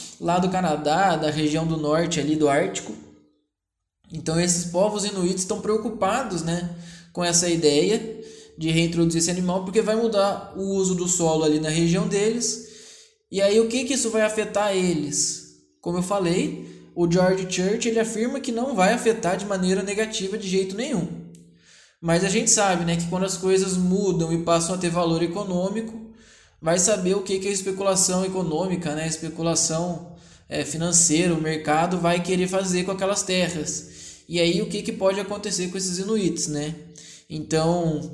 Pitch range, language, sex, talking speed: 160-200 Hz, Portuguese, male, 175 wpm